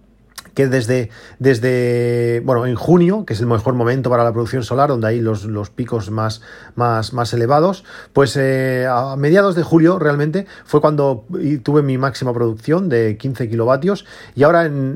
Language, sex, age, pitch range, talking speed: Spanish, male, 40-59, 115-145 Hz, 175 wpm